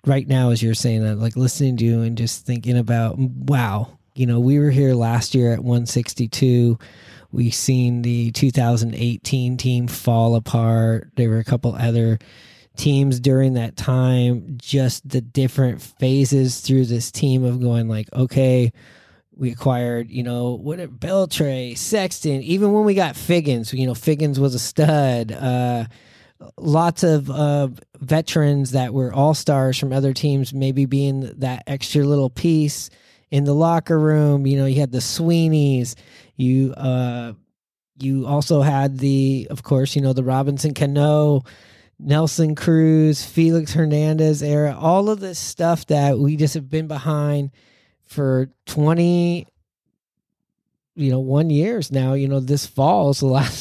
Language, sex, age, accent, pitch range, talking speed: English, male, 20-39, American, 125-150 Hz, 155 wpm